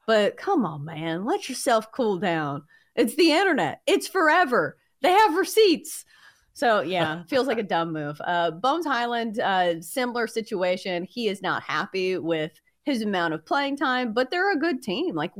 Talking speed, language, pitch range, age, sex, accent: 175 wpm, English, 180-290 Hz, 30-49, female, American